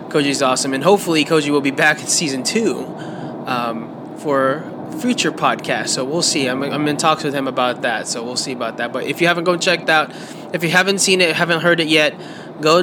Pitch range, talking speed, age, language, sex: 140-165 Hz, 225 wpm, 20-39, English, male